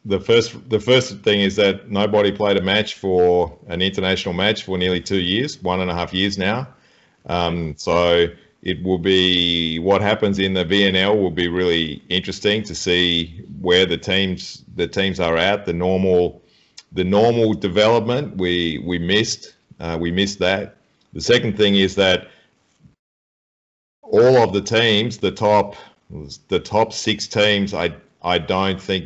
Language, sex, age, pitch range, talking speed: Polish, male, 40-59, 85-100 Hz, 165 wpm